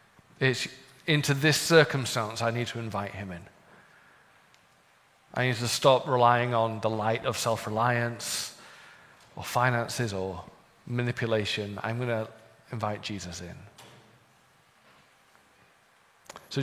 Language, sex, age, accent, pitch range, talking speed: English, male, 40-59, British, 115-140 Hz, 115 wpm